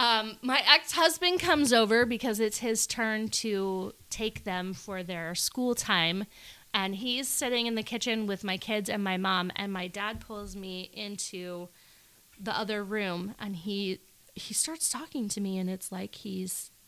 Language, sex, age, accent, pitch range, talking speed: English, female, 20-39, American, 190-280 Hz, 170 wpm